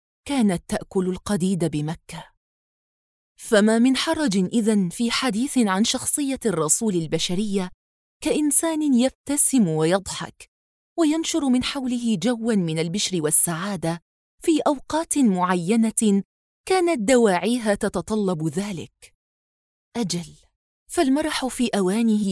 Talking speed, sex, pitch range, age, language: 95 wpm, female, 185-250 Hz, 20-39, Arabic